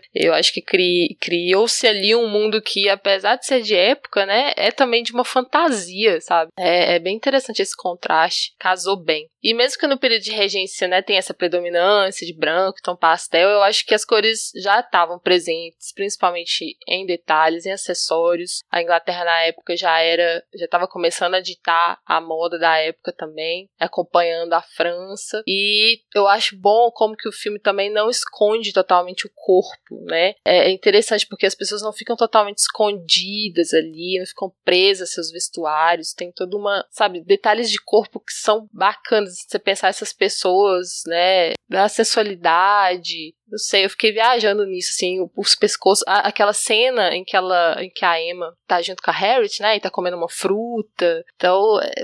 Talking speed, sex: 175 wpm, female